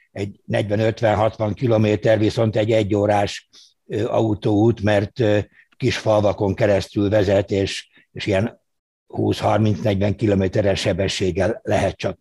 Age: 60-79